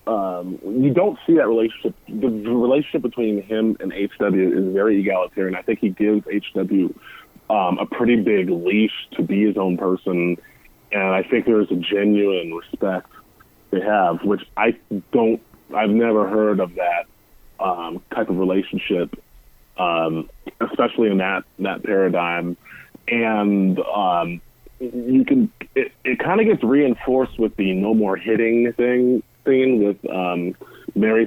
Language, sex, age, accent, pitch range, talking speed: English, male, 20-39, American, 90-120 Hz, 150 wpm